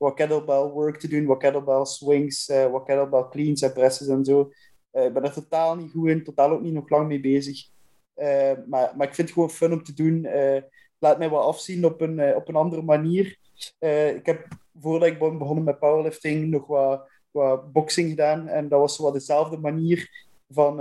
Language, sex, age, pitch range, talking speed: Dutch, male, 20-39, 135-155 Hz, 215 wpm